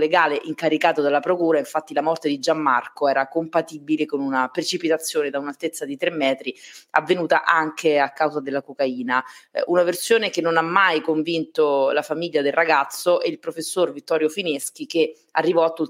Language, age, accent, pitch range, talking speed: Italian, 30-49, native, 145-175 Hz, 165 wpm